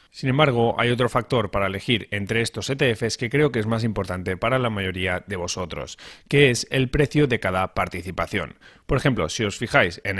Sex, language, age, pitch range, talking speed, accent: male, Spanish, 30-49, 100-130 Hz, 200 wpm, Spanish